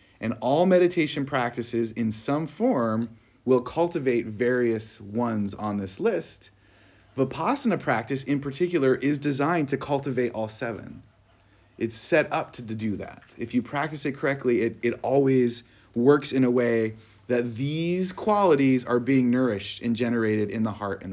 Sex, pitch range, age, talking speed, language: male, 105-140 Hz, 30-49, 155 wpm, English